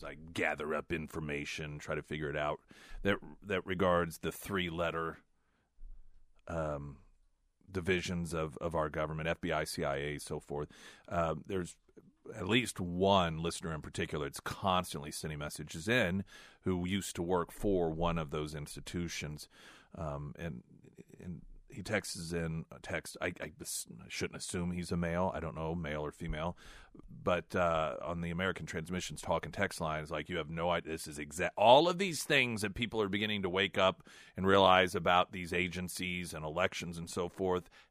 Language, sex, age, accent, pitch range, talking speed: English, male, 40-59, American, 75-95 Hz, 170 wpm